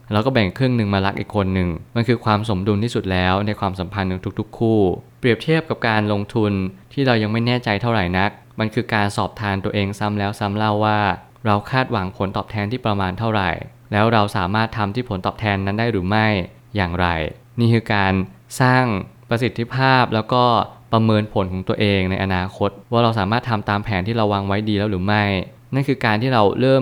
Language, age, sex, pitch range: Thai, 20-39, male, 100-120 Hz